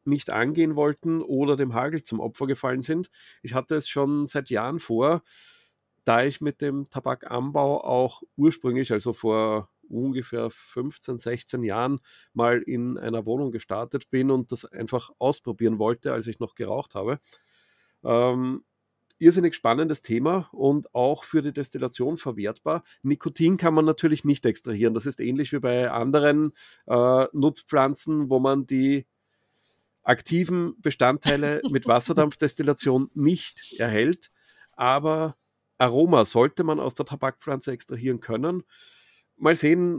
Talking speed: 135 wpm